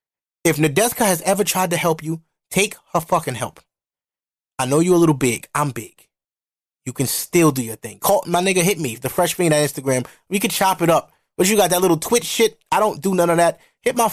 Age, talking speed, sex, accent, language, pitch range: 20-39, 240 wpm, male, American, English, 150-215 Hz